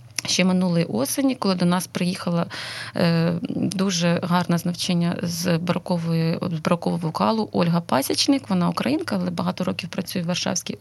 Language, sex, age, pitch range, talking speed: Ukrainian, female, 20-39, 175-205 Hz, 140 wpm